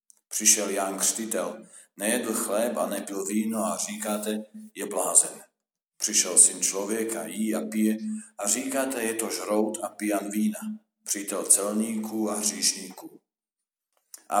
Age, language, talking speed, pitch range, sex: 50-69, Slovak, 130 wpm, 105-110 Hz, male